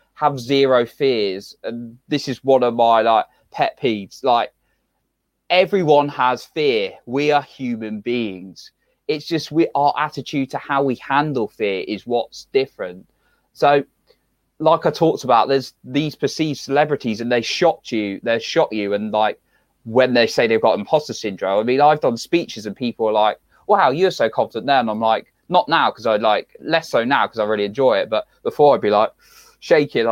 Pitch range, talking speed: 115-150 Hz, 190 wpm